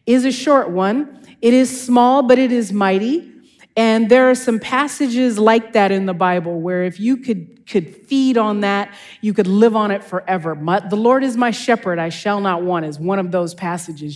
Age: 40-59